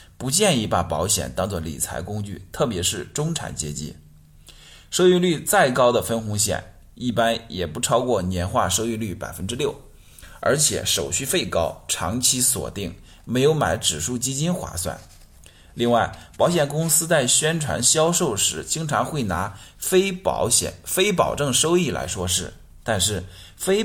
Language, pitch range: Chinese, 85-130 Hz